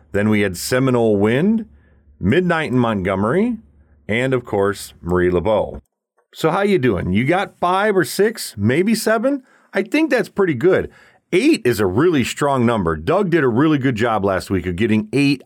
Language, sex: English, male